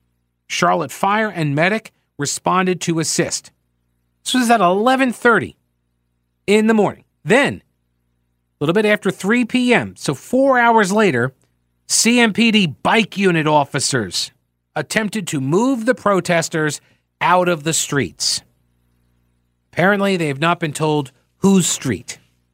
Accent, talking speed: American, 120 wpm